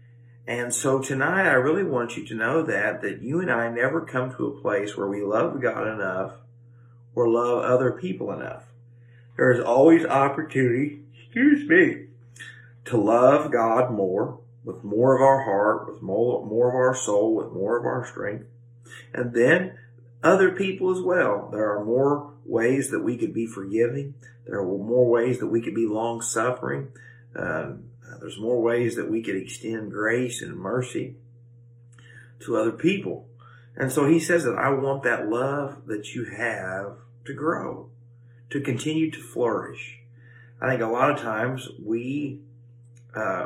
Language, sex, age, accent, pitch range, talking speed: English, male, 50-69, American, 115-130 Hz, 165 wpm